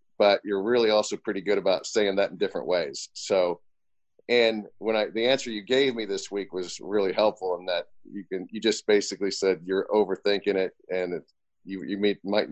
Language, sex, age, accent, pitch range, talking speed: English, male, 40-59, American, 95-110 Hz, 205 wpm